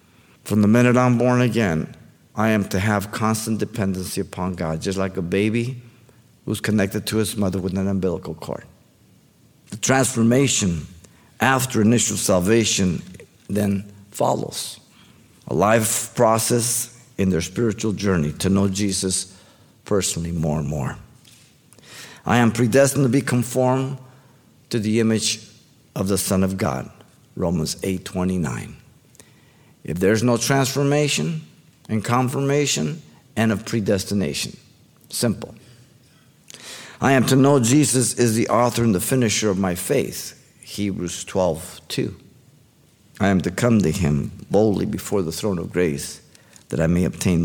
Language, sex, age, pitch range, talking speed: English, male, 50-69, 95-125 Hz, 135 wpm